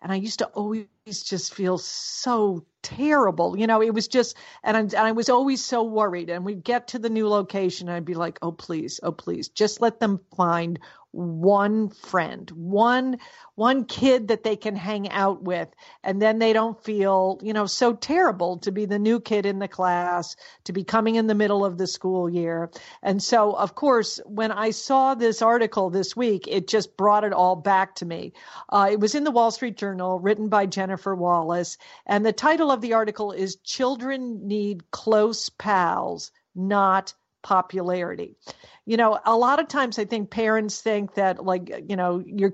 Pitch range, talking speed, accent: 190-225 Hz, 195 wpm, American